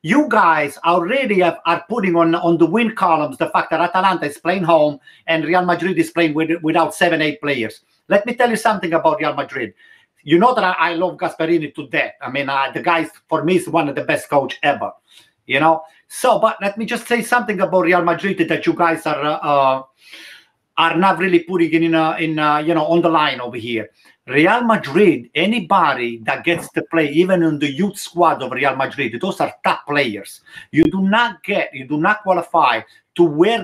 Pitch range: 160-205 Hz